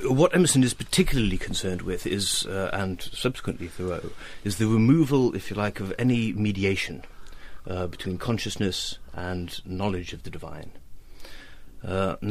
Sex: male